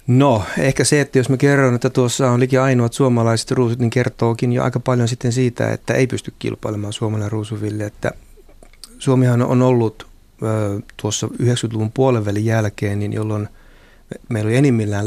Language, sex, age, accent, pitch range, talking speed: Finnish, male, 30-49, native, 105-125 Hz, 165 wpm